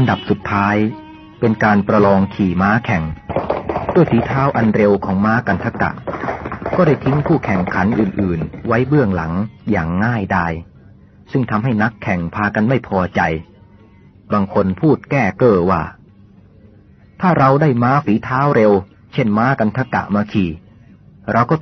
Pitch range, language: 100-125 Hz, Thai